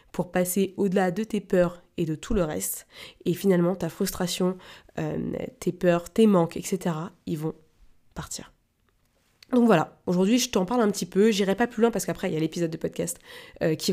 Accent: French